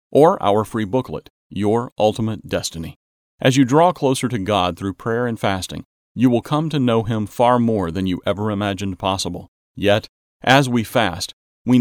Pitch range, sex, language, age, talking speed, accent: 95-120 Hz, male, English, 40-59, 180 wpm, American